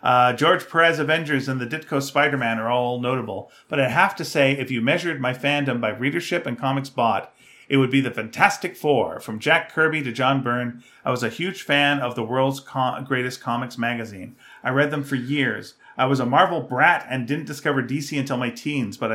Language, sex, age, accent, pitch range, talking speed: English, male, 40-59, American, 125-145 Hz, 210 wpm